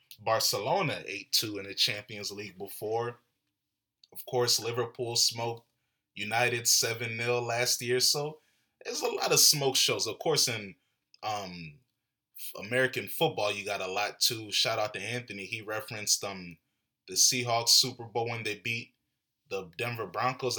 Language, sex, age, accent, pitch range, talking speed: English, male, 20-39, American, 110-135 Hz, 145 wpm